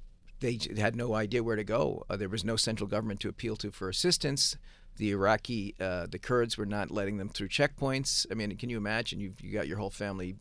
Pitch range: 95-120 Hz